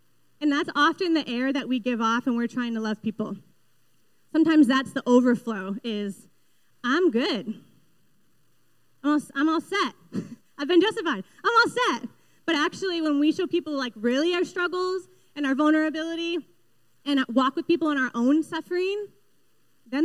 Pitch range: 245-325 Hz